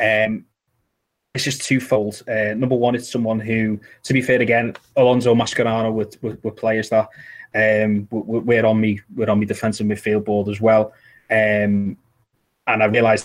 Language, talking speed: English, 170 wpm